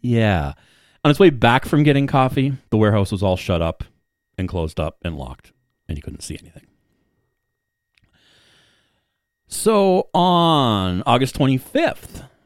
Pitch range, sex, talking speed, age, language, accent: 95-125 Hz, male, 135 wpm, 30-49, English, American